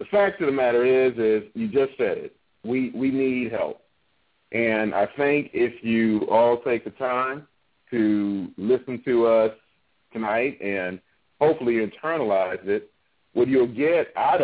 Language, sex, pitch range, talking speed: English, male, 105-145 Hz, 155 wpm